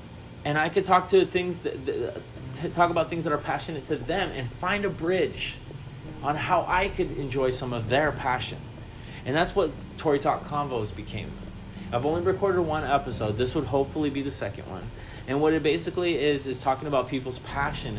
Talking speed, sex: 195 wpm, male